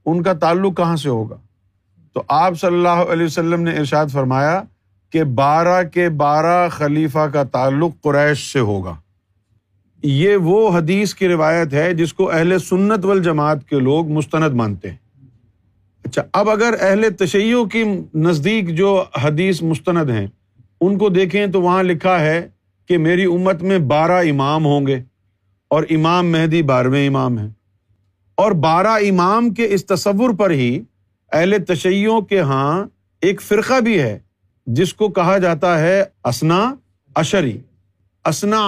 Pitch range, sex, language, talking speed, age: 125-190 Hz, male, Urdu, 150 wpm, 50-69